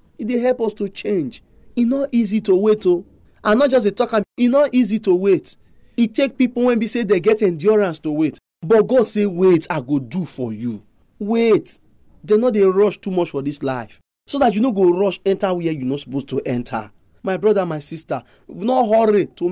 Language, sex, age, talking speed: English, male, 30-49, 230 wpm